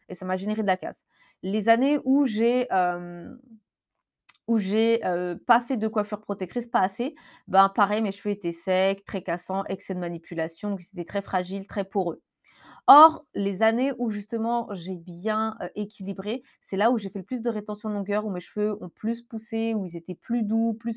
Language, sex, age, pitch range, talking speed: French, female, 20-39, 190-235 Hz, 205 wpm